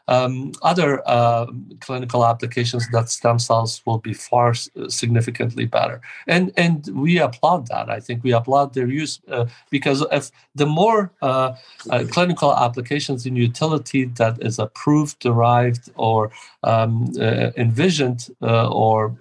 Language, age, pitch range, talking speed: English, 50-69, 115-140 Hz, 140 wpm